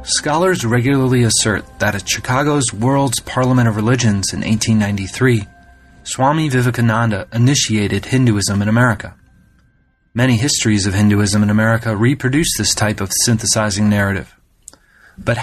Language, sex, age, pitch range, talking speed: English, male, 30-49, 105-130 Hz, 120 wpm